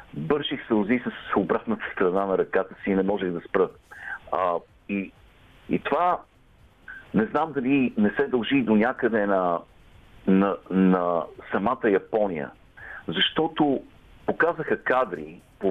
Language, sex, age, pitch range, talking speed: Bulgarian, male, 50-69, 95-125 Hz, 125 wpm